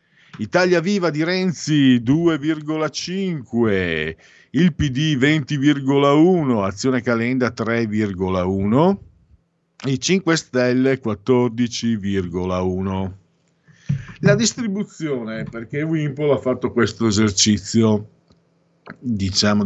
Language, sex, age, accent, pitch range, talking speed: Italian, male, 50-69, native, 95-135 Hz, 75 wpm